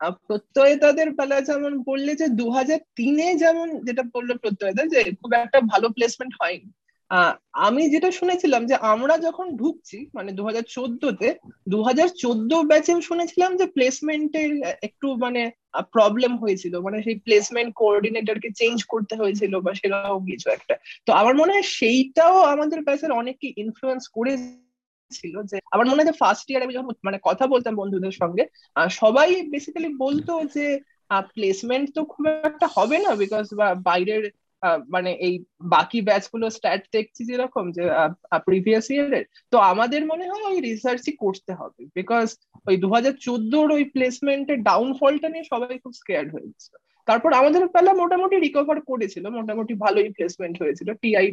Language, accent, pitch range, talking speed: Bengali, native, 210-300 Hz, 80 wpm